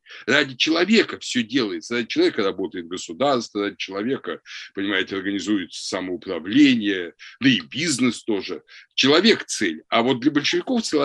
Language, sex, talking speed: Russian, male, 125 wpm